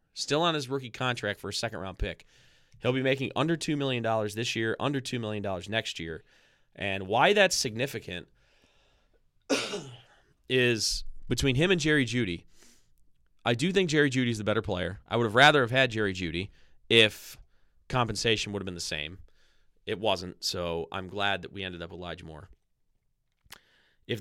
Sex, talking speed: male, 170 wpm